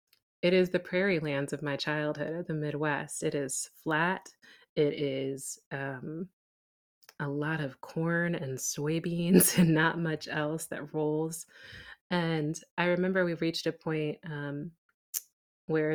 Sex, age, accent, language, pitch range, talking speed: female, 30-49, American, English, 145-170 Hz, 145 wpm